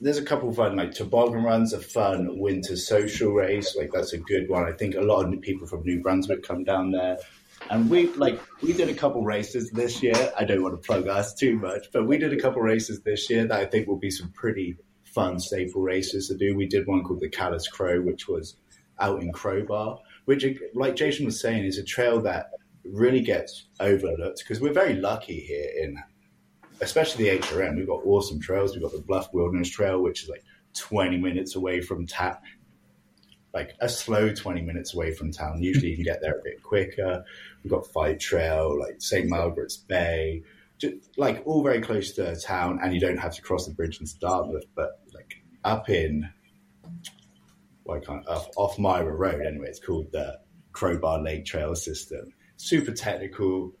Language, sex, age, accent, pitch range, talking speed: English, male, 20-39, British, 90-120 Hz, 200 wpm